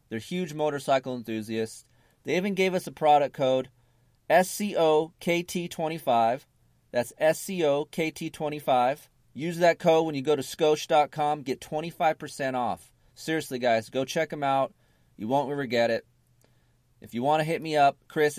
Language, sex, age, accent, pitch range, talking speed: English, male, 30-49, American, 115-155 Hz, 145 wpm